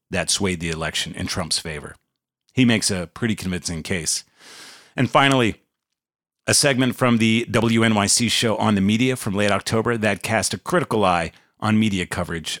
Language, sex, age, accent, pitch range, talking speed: English, male, 40-59, American, 90-115 Hz, 165 wpm